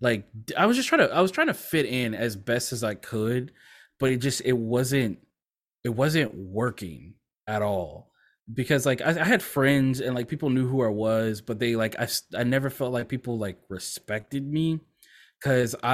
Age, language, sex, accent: 20-39, English, male, American